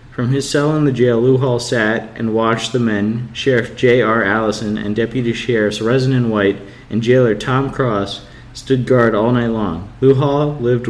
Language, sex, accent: English, male, American